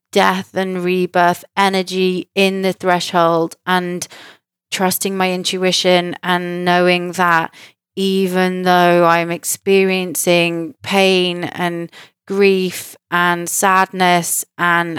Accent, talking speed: British, 95 wpm